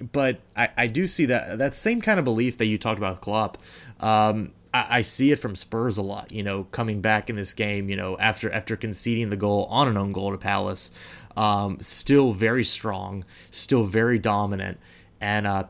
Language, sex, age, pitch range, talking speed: English, male, 20-39, 100-115 Hz, 210 wpm